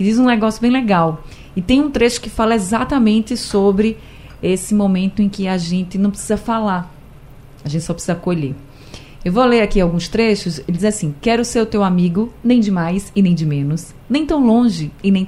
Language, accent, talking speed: Portuguese, Brazilian, 210 wpm